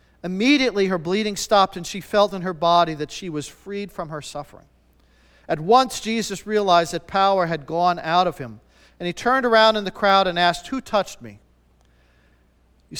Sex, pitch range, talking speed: male, 150-210 Hz, 190 wpm